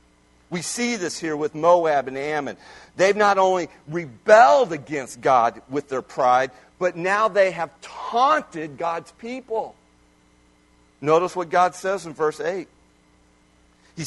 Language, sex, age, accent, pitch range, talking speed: English, male, 50-69, American, 140-195 Hz, 135 wpm